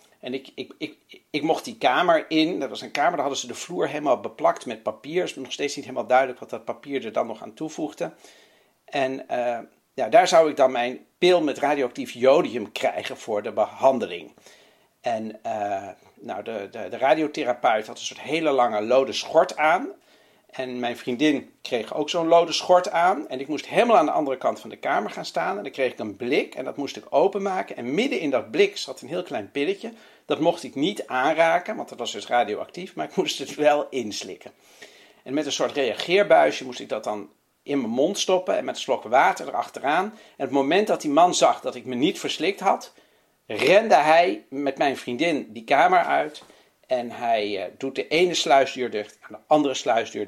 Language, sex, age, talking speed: Dutch, male, 60-79, 210 wpm